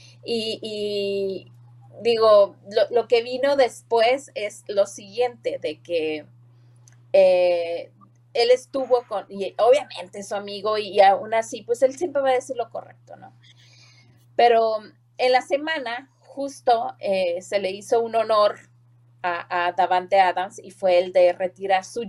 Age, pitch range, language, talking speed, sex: 30-49, 170-230 Hz, Spanish, 145 wpm, female